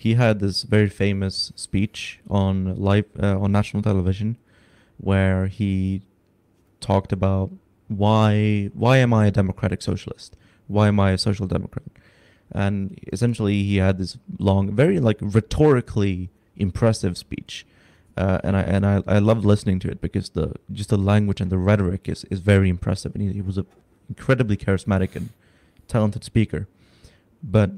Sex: male